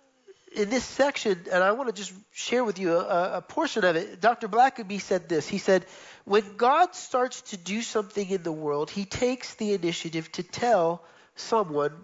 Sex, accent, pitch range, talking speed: male, American, 170-235 Hz, 190 wpm